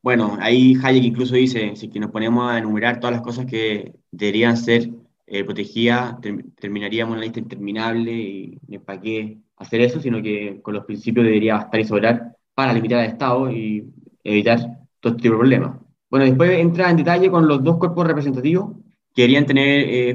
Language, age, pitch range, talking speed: Spanish, 20-39, 115-135 Hz, 180 wpm